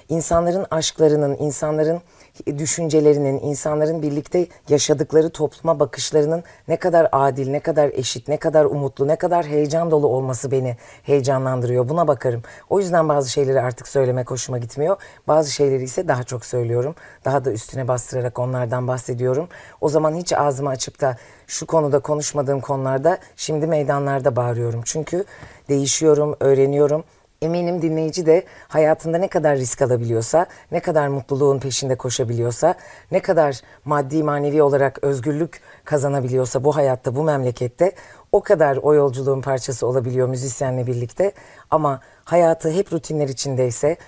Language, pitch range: Turkish, 135-155 Hz